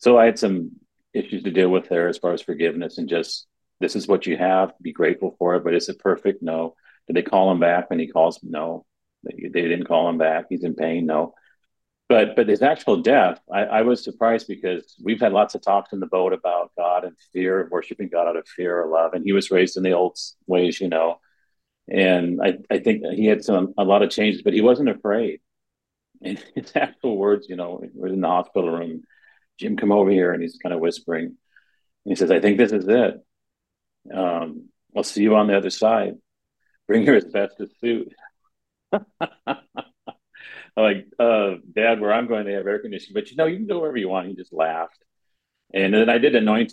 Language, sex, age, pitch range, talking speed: English, male, 40-59, 90-110 Hz, 220 wpm